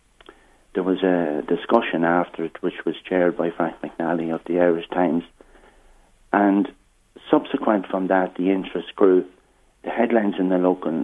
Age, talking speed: 60-79, 150 wpm